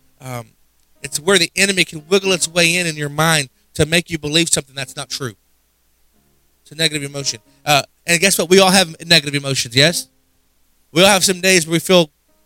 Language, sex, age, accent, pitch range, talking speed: English, male, 20-39, American, 110-180 Hz, 205 wpm